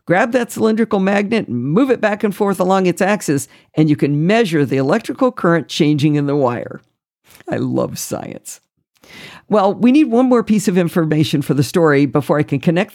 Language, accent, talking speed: English, American, 195 wpm